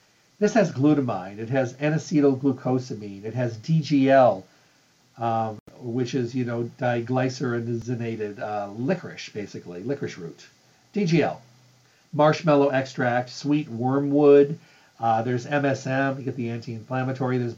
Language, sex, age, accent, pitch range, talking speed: English, male, 50-69, American, 125-145 Hz, 115 wpm